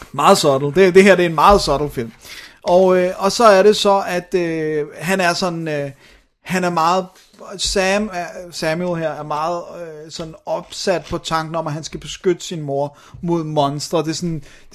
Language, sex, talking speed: Danish, male, 210 wpm